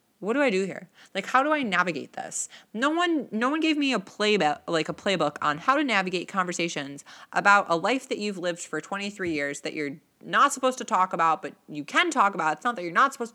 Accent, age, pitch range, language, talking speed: American, 20-39, 165-250 Hz, English, 245 wpm